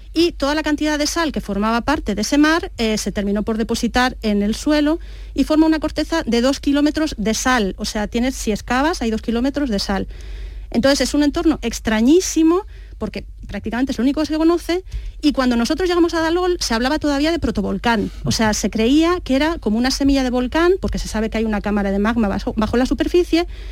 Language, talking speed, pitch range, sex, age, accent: Spanish, 220 wpm, 220-305 Hz, female, 40-59, Spanish